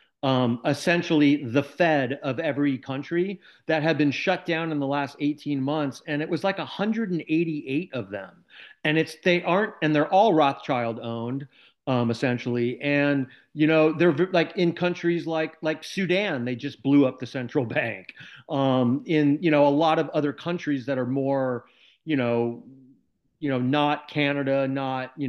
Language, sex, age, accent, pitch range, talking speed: English, male, 40-59, American, 130-165 Hz, 180 wpm